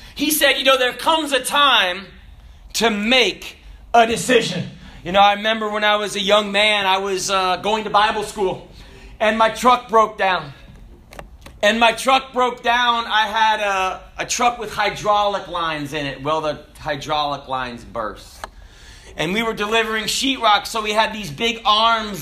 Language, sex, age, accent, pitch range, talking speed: English, male, 40-59, American, 150-220 Hz, 175 wpm